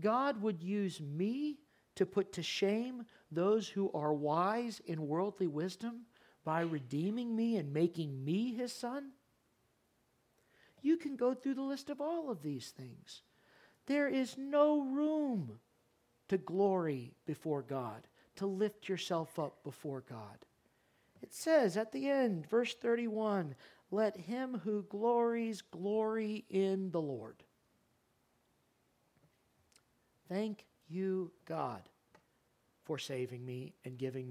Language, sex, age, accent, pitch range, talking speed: English, male, 50-69, American, 150-215 Hz, 125 wpm